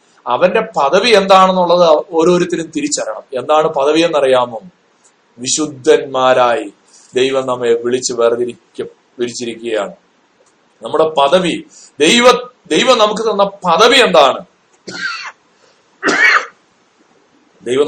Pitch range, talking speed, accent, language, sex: 135-200 Hz, 75 wpm, native, Malayalam, male